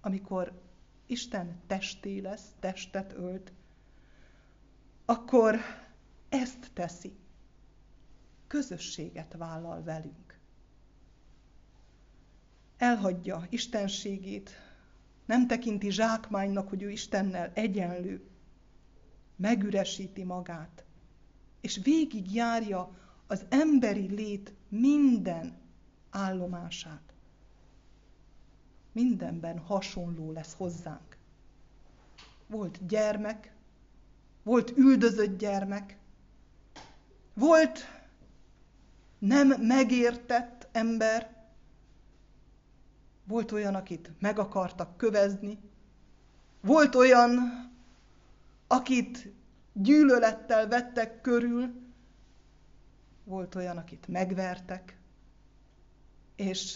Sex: female